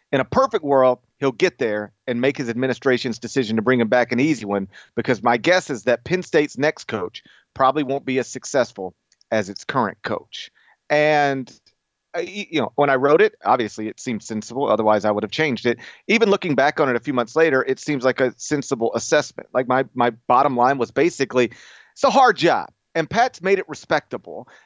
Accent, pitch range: American, 120-160 Hz